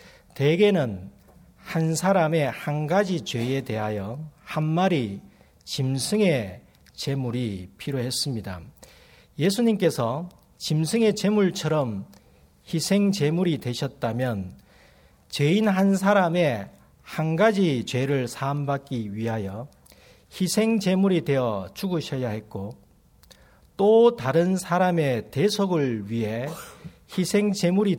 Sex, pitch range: male, 115-180 Hz